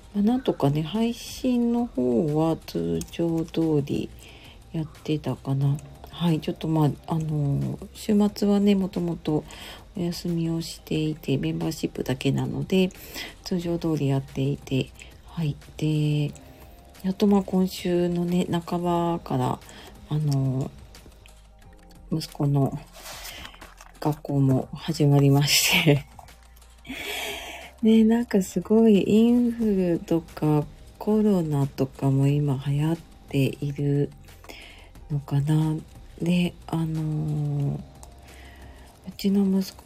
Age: 40-59